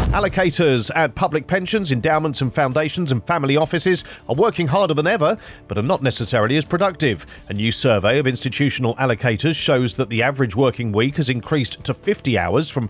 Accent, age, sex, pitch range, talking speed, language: British, 40-59, male, 125-160 Hz, 180 wpm, English